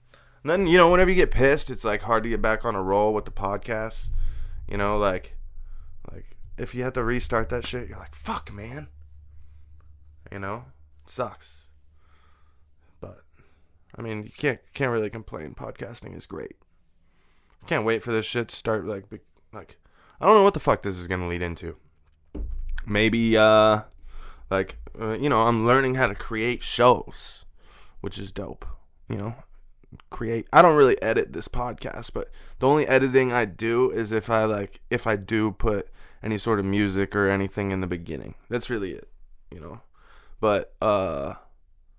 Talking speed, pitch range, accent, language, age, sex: 175 wpm, 85-115 Hz, American, English, 20-39, male